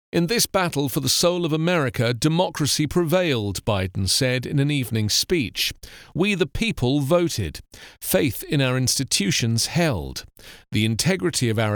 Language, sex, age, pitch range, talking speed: English, male, 40-59, 115-165 Hz, 150 wpm